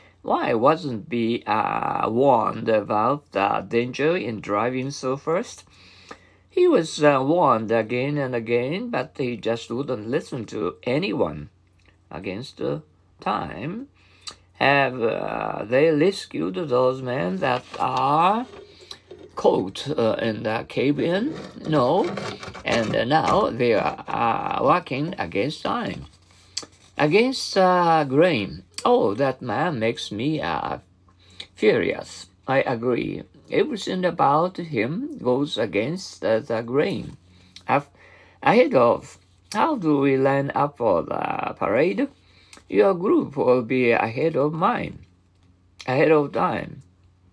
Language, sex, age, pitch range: Japanese, male, 50-69, 100-150 Hz